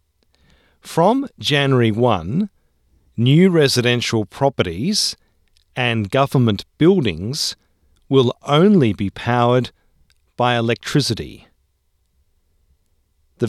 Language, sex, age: English, male, 40-59